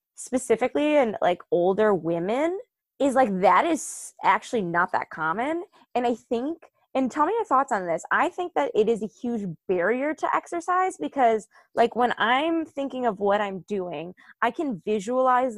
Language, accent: English, American